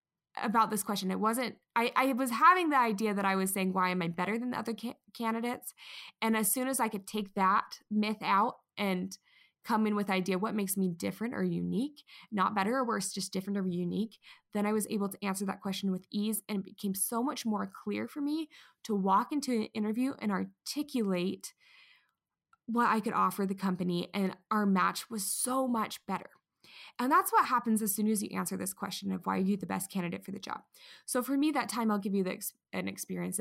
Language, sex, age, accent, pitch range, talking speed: English, female, 20-39, American, 195-250 Hz, 225 wpm